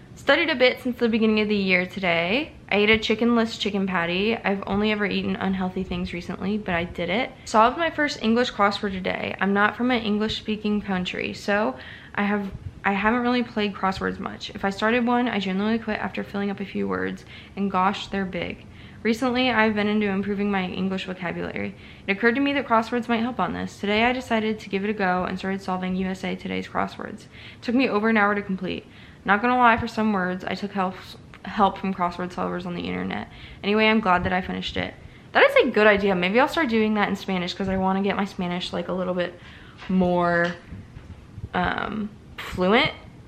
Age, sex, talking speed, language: 20-39, female, 215 wpm, English